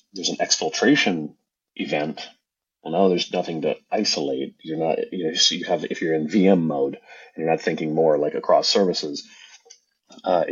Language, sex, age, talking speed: English, male, 30-49, 185 wpm